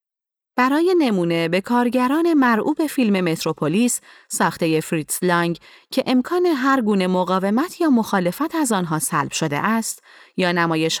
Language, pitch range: Persian, 170-245 Hz